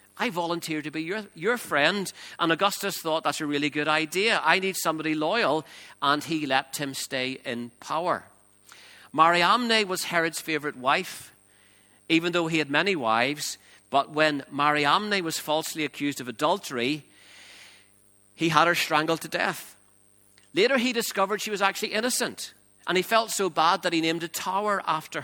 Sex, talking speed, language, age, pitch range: male, 165 wpm, English, 50-69, 145-200 Hz